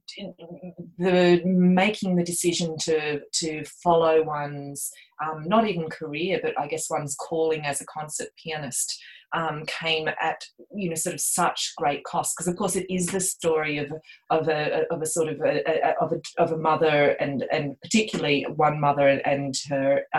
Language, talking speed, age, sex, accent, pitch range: English, 185 wpm, 30-49, female, Australian, 140-170 Hz